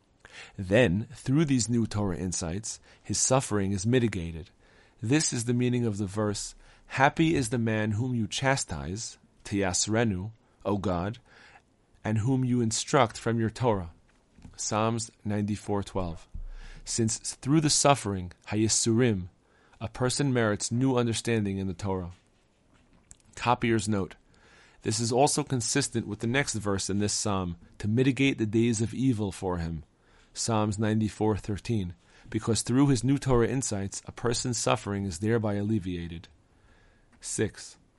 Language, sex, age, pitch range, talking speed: English, male, 40-59, 100-120 Hz, 135 wpm